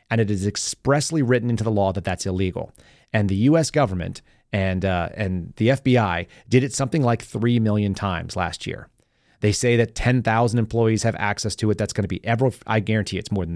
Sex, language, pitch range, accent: male, English, 100-120 Hz, American